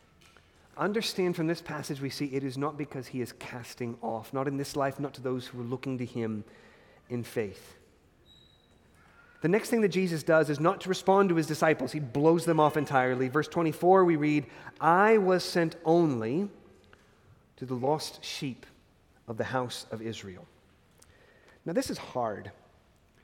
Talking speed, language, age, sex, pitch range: 175 wpm, English, 30-49, male, 135-195 Hz